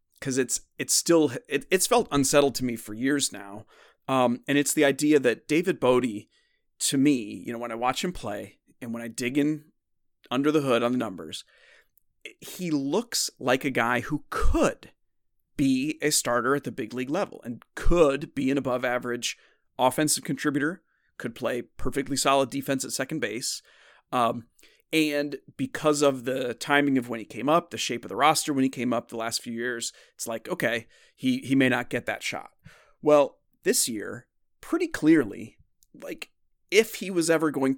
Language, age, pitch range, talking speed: English, 30-49, 120-150 Hz, 185 wpm